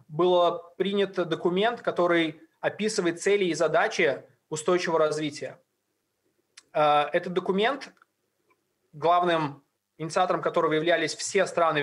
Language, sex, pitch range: Russian, male, 155-185 Hz